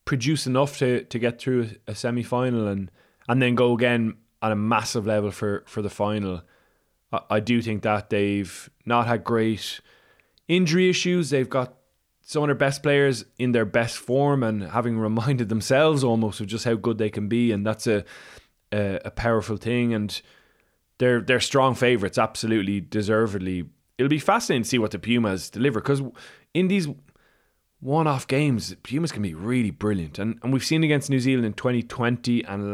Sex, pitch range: male, 110-130 Hz